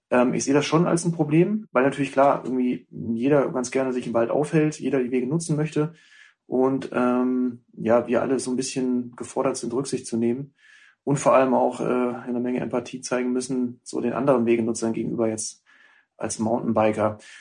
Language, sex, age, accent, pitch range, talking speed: German, male, 30-49, German, 120-135 Hz, 185 wpm